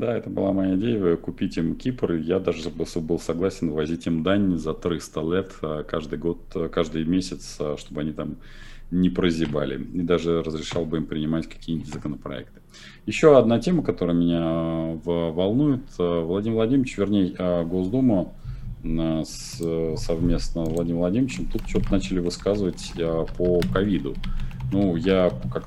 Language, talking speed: Russian, 135 wpm